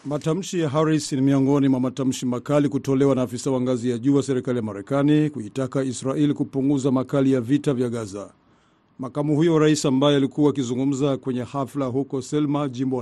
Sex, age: male, 50-69